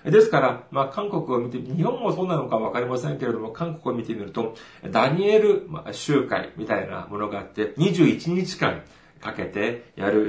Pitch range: 110-175 Hz